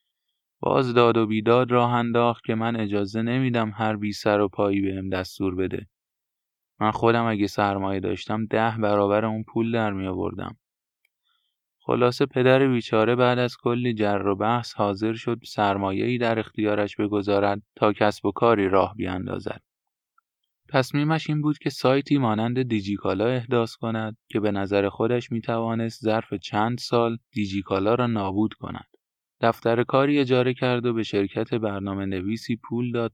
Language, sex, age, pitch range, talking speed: Persian, male, 20-39, 105-125 Hz, 155 wpm